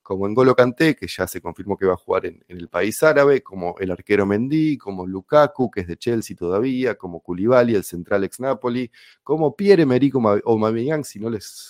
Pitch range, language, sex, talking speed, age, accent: 100-135 Hz, Spanish, male, 200 wpm, 30-49, Argentinian